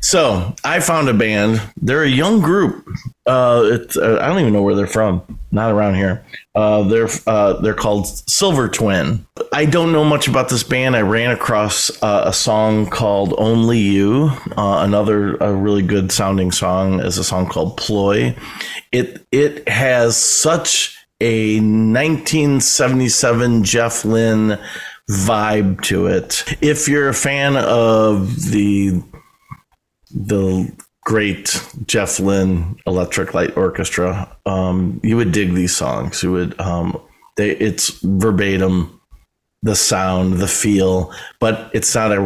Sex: male